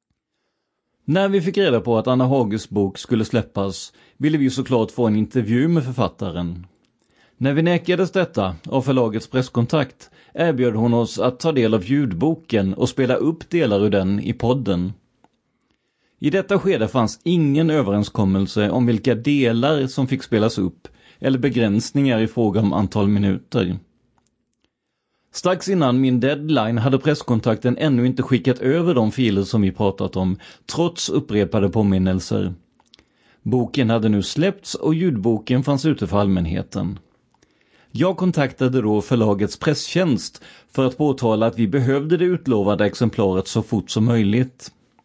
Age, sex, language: 30-49, male, Swedish